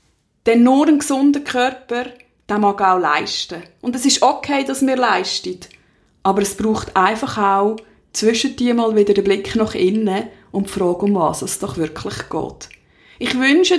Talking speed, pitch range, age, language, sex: 180 wpm, 200-255 Hz, 20-39, German, female